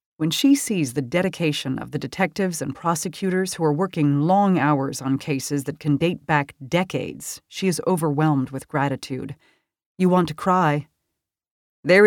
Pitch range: 145-190 Hz